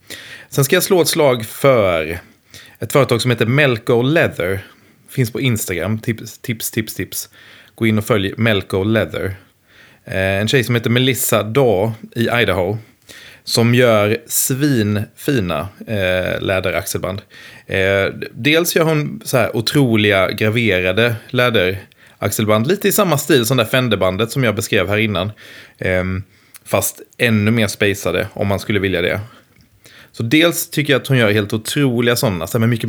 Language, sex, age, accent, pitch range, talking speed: English, male, 30-49, Swedish, 105-125 Hz, 150 wpm